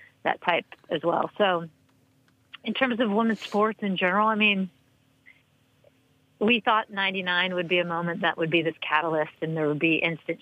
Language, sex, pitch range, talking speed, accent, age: English, female, 155-185 Hz, 180 wpm, American, 40-59